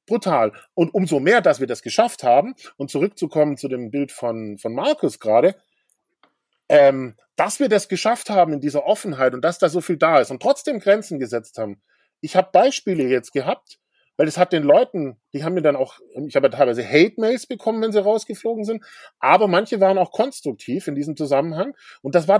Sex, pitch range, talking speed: male, 140-210 Hz, 200 wpm